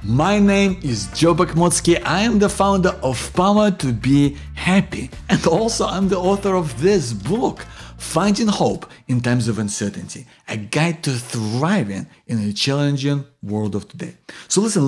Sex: male